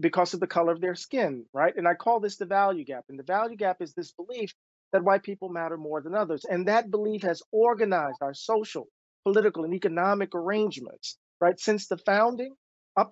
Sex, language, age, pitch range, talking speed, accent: male, English, 40-59, 175-215 Hz, 205 wpm, American